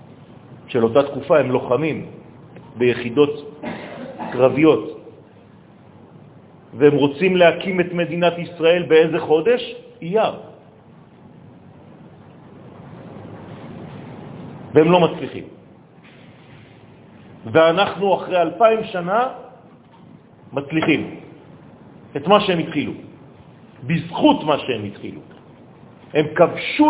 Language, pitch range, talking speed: French, 140-185 Hz, 75 wpm